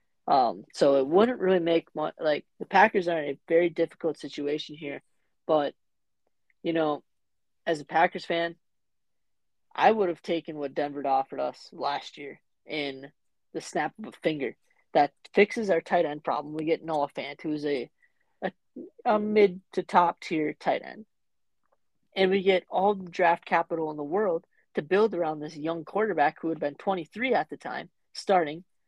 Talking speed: 175 wpm